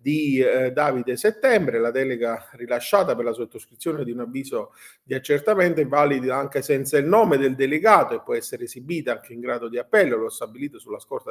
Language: Italian